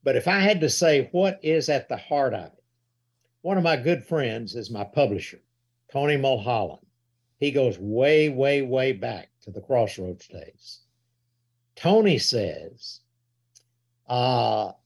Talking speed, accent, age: 145 wpm, American, 60-79